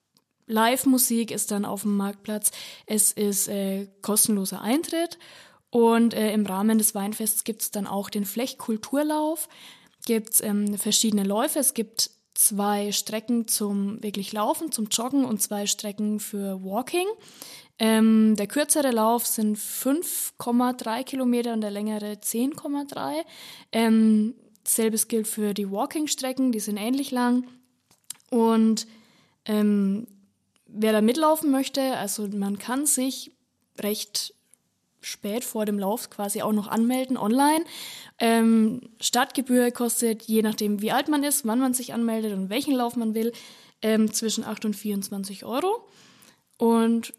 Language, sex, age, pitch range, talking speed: German, female, 20-39, 210-250 Hz, 135 wpm